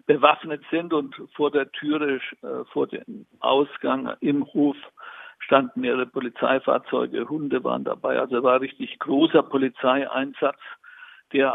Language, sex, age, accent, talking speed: German, male, 60-79, German, 125 wpm